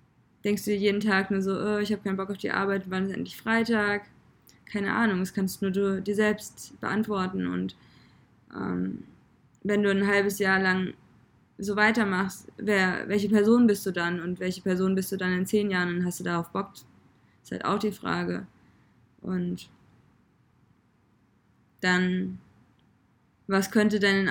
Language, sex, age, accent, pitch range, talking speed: German, female, 20-39, German, 175-205 Hz, 175 wpm